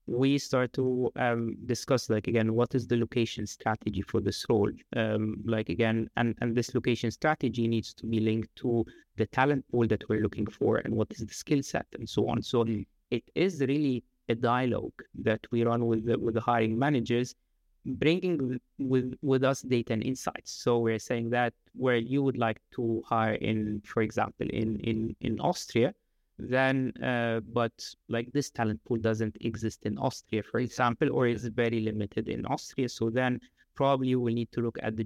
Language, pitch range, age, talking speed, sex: English, 110-130 Hz, 30-49, 190 wpm, male